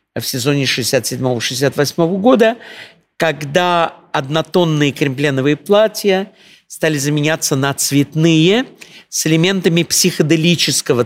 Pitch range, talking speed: 140-190 Hz, 80 wpm